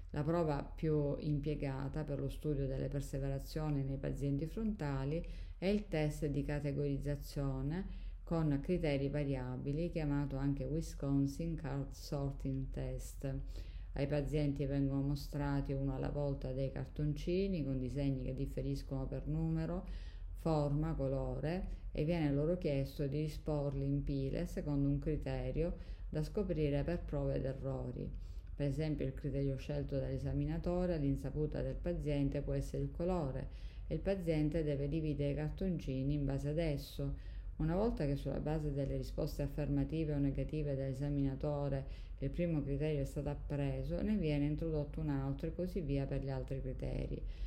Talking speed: 145 wpm